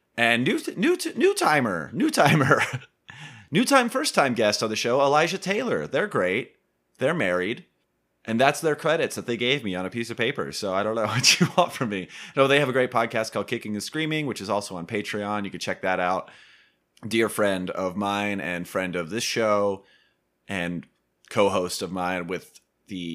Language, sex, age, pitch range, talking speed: English, male, 30-49, 90-125 Hz, 195 wpm